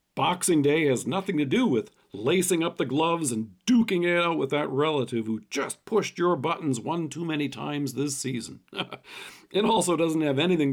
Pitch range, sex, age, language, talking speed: 140-195 Hz, male, 50-69, English, 190 wpm